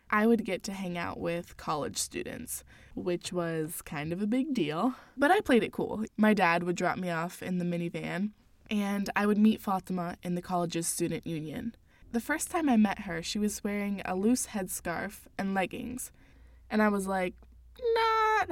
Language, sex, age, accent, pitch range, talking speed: English, female, 20-39, American, 175-235 Hz, 190 wpm